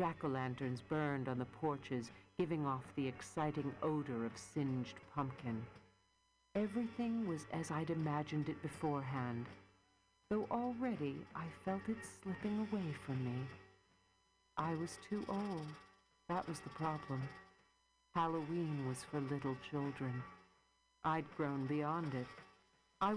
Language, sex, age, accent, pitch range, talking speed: English, female, 50-69, American, 135-205 Hz, 120 wpm